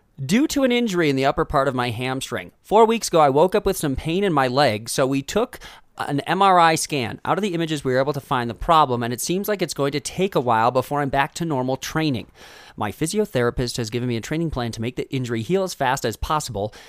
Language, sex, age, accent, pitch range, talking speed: English, male, 30-49, American, 125-165 Hz, 260 wpm